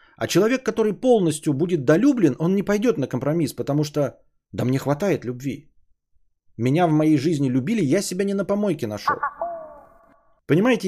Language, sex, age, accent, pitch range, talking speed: Russian, male, 30-49, native, 145-215 Hz, 160 wpm